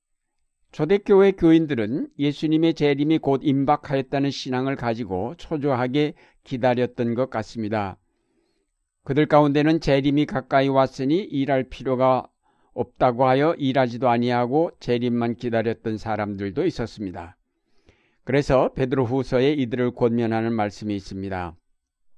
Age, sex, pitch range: 60-79, male, 115-145 Hz